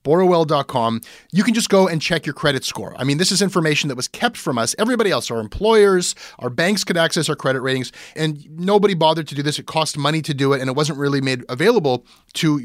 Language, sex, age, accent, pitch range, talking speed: English, male, 30-49, American, 130-180 Hz, 235 wpm